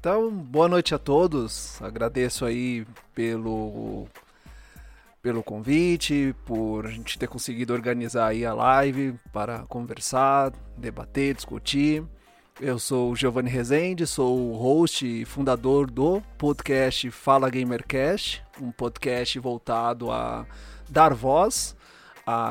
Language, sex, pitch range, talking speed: Portuguese, male, 125-155 Hz, 120 wpm